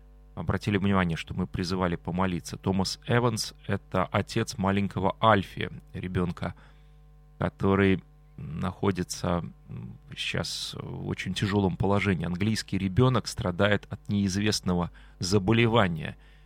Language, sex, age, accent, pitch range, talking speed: Russian, male, 30-49, native, 95-145 Hz, 95 wpm